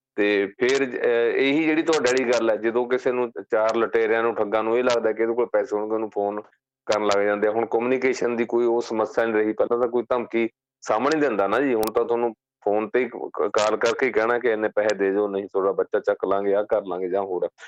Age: 30-49